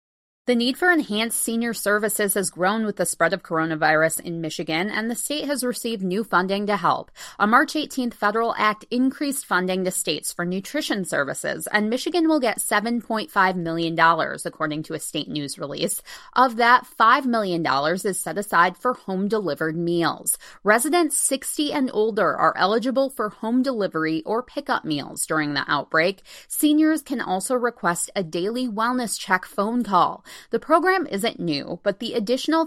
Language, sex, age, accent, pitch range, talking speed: English, female, 20-39, American, 175-250 Hz, 165 wpm